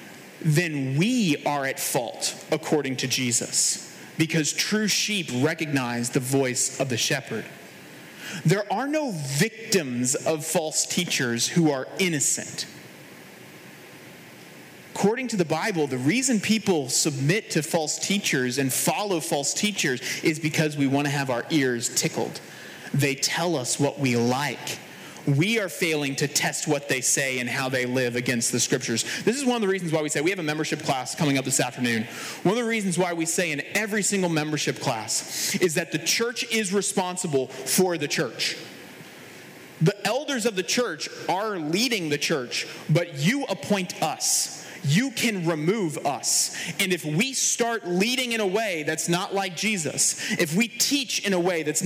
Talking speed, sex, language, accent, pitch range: 170 wpm, male, English, American, 145-200 Hz